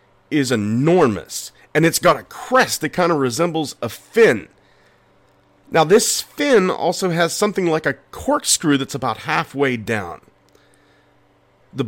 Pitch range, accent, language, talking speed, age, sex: 110-155 Hz, American, English, 135 wpm, 40-59, male